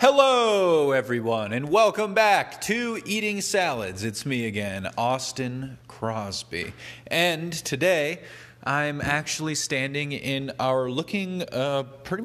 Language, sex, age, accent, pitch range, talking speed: English, male, 30-49, American, 105-130 Hz, 115 wpm